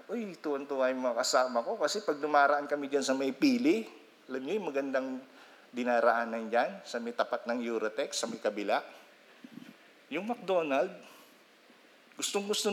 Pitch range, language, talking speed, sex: 140-215 Hz, English, 140 wpm, male